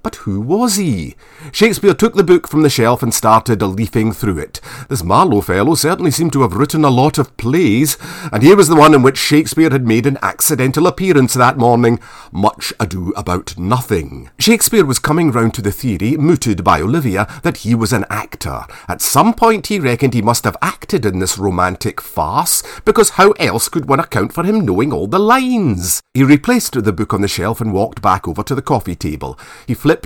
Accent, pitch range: British, 105-160 Hz